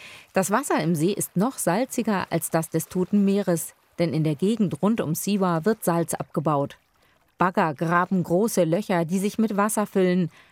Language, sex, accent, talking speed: German, female, German, 175 wpm